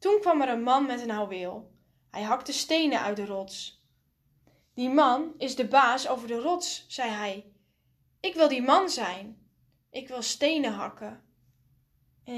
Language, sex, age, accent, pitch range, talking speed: Dutch, female, 10-29, Dutch, 200-265 Hz, 165 wpm